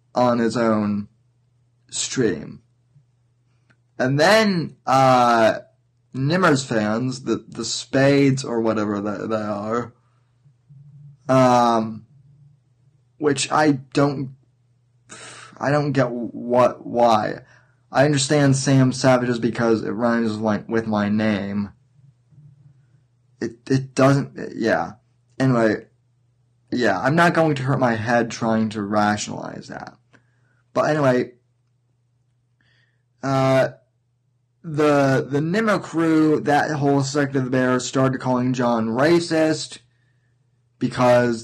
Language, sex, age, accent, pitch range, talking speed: English, male, 20-39, American, 120-140 Hz, 105 wpm